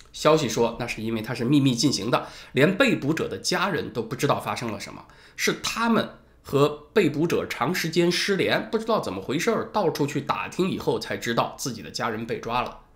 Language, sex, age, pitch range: Chinese, male, 20-39, 115-165 Hz